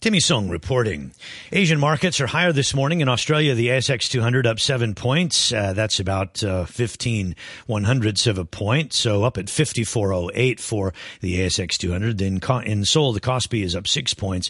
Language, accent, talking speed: English, American, 180 wpm